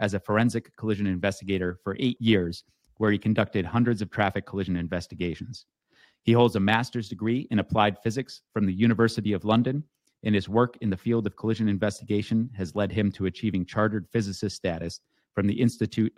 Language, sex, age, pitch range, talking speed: English, male, 30-49, 100-115 Hz, 180 wpm